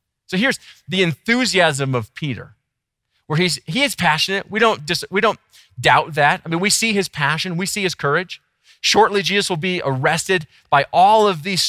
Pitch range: 105-175 Hz